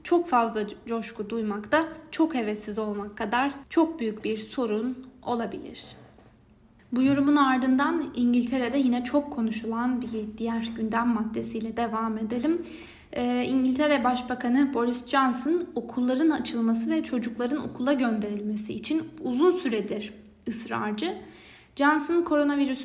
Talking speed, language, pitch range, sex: 115 wpm, Turkish, 230-290 Hz, female